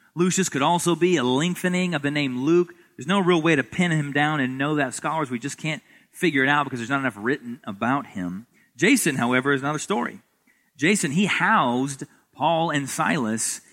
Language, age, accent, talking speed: English, 30-49, American, 200 wpm